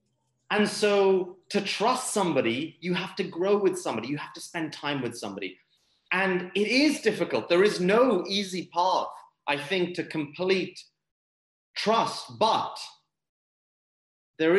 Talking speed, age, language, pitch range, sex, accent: 140 wpm, 30-49, English, 120-180 Hz, male, British